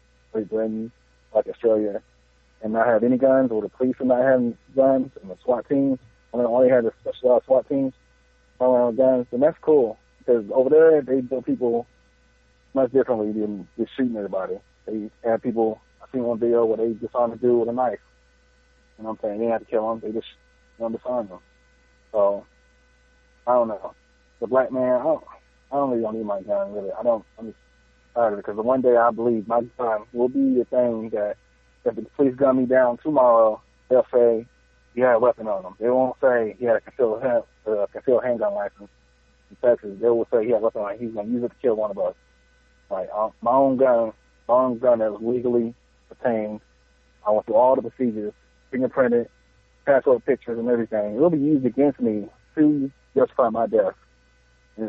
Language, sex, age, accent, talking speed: English, male, 30-49, American, 210 wpm